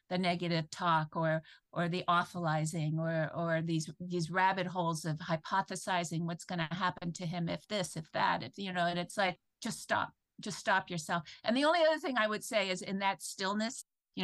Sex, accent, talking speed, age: female, American, 205 wpm, 50-69